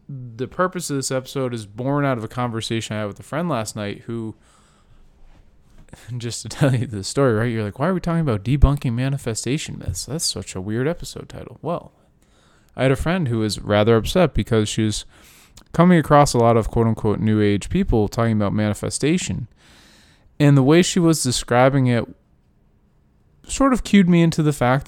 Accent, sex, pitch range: American, male, 105-140 Hz